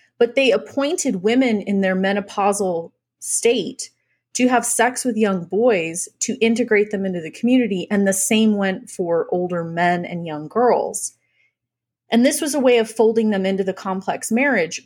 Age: 30-49